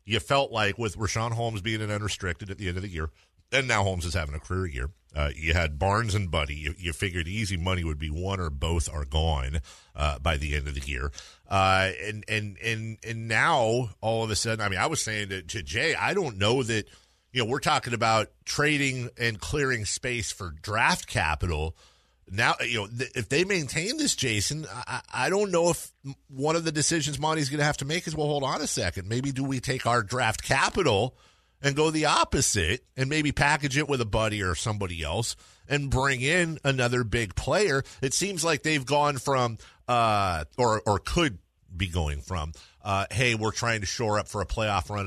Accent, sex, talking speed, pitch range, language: American, male, 215 wpm, 90-130 Hz, English